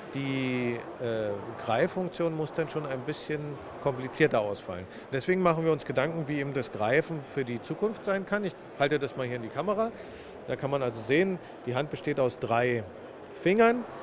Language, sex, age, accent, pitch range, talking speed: German, male, 40-59, German, 125-170 Hz, 185 wpm